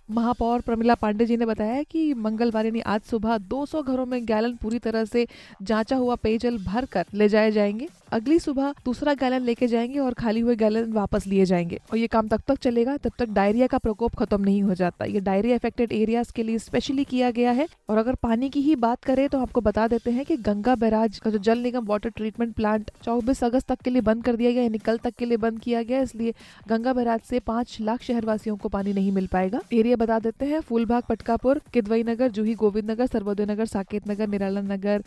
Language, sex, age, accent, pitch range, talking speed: Hindi, female, 20-39, native, 210-245 Hz, 225 wpm